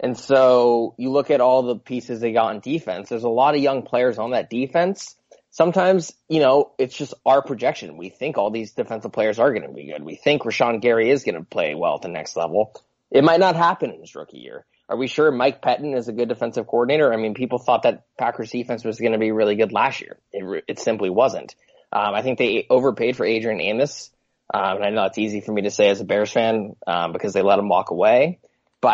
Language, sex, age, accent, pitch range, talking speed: English, male, 20-39, American, 105-130 Hz, 250 wpm